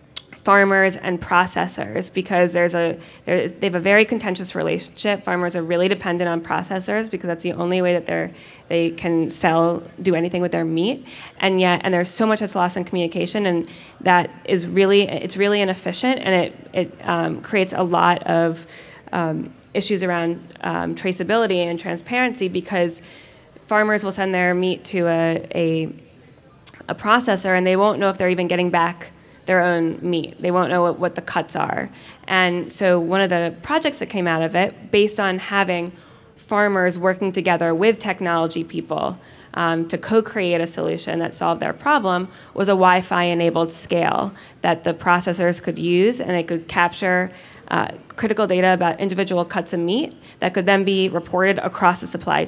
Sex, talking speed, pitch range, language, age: female, 180 wpm, 170-195 Hz, English, 20-39